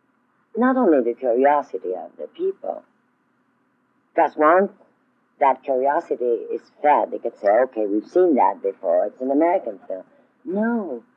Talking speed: 140 wpm